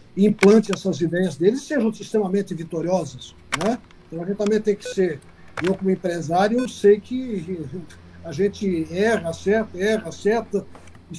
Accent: Brazilian